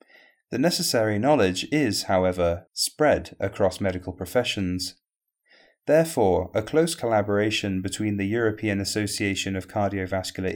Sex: male